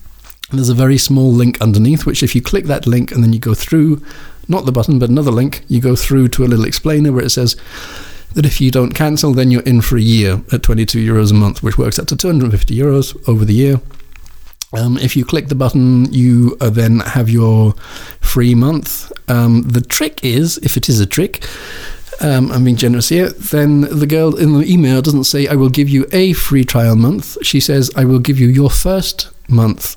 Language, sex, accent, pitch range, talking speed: German, male, British, 115-140 Hz, 220 wpm